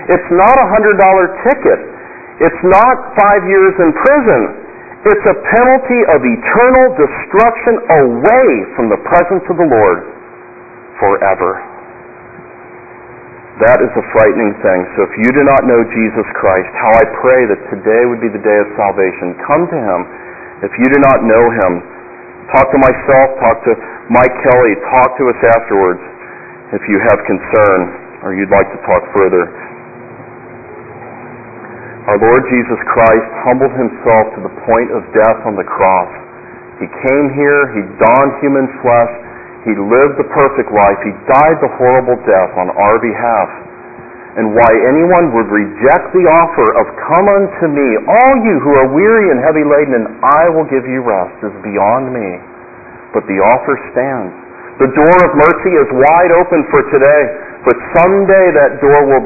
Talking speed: 160 wpm